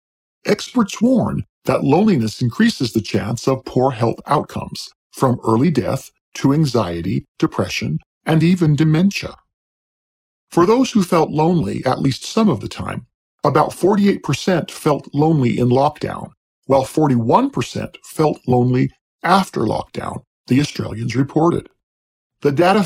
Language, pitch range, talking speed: English, 115-155 Hz, 125 wpm